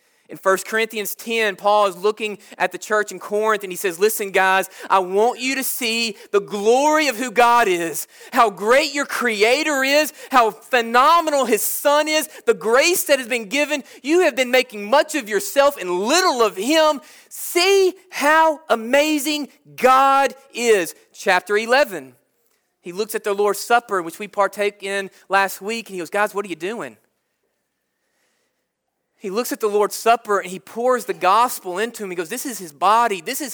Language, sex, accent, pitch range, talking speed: English, male, American, 200-280 Hz, 185 wpm